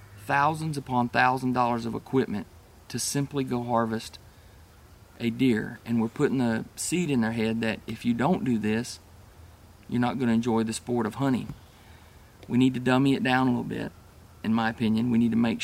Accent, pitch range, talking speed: American, 110-130 Hz, 200 wpm